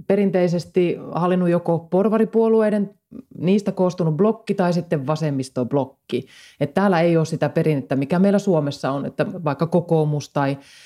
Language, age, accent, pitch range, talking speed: Finnish, 30-49, native, 150-185 Hz, 125 wpm